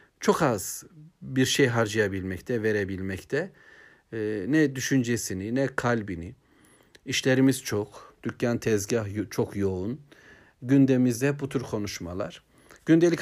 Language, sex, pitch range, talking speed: Turkish, male, 115-145 Hz, 110 wpm